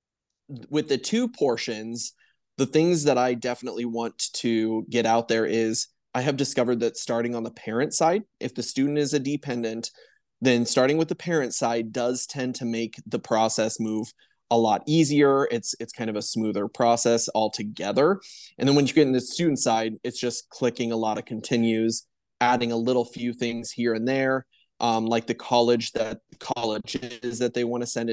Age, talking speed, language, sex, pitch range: 20-39, 195 wpm, English, male, 115-130 Hz